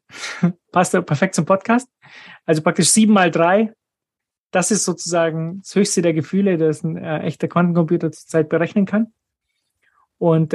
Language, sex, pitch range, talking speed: German, male, 155-185 Hz, 150 wpm